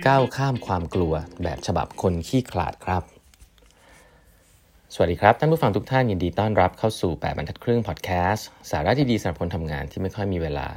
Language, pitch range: Thai, 85-115 Hz